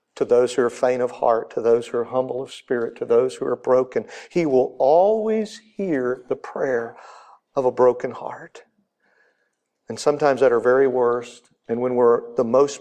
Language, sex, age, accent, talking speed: English, male, 50-69, American, 185 wpm